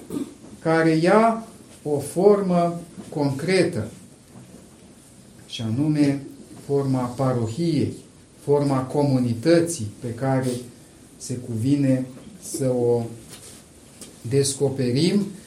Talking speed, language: 70 wpm, Romanian